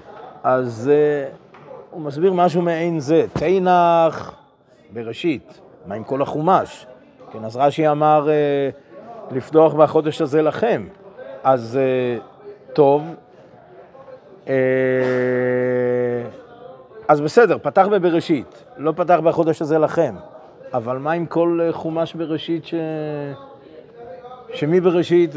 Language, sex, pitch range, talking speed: Hebrew, male, 135-170 Hz, 90 wpm